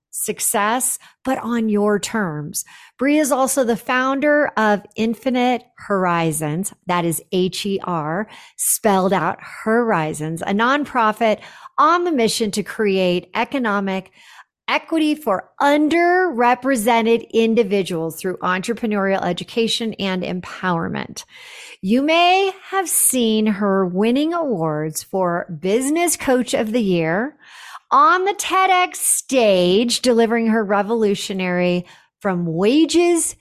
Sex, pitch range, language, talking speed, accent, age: female, 195-280 Hz, English, 110 wpm, American, 50-69